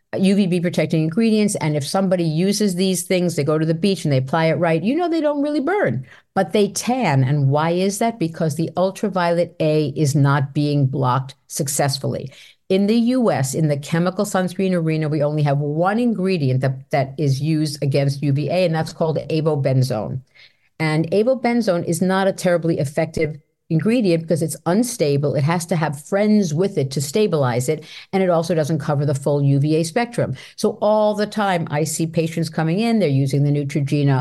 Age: 50-69